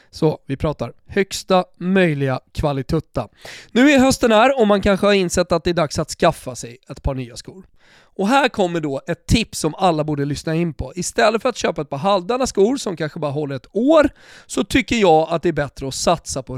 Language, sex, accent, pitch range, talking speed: Swedish, male, native, 155-205 Hz, 225 wpm